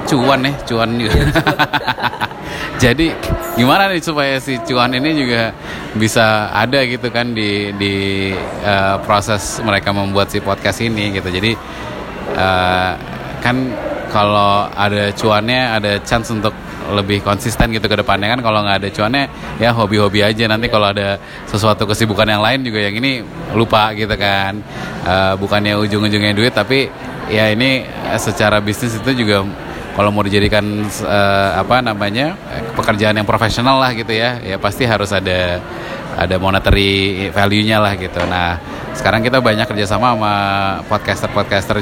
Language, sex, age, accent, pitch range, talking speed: Indonesian, male, 20-39, native, 100-120 Hz, 145 wpm